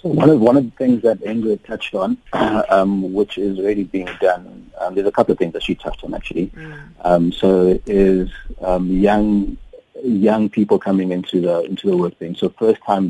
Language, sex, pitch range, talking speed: English, male, 85-100 Hz, 205 wpm